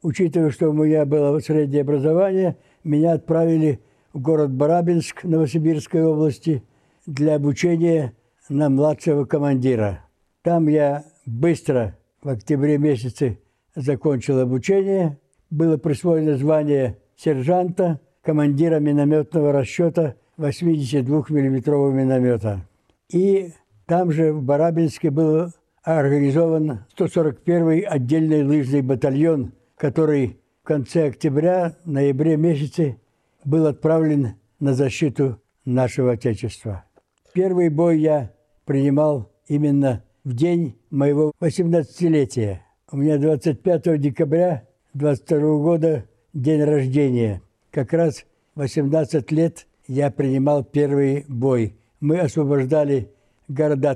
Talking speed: 100 wpm